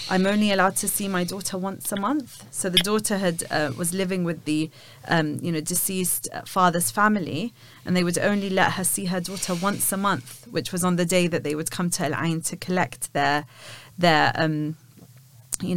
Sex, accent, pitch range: female, British, 150-200 Hz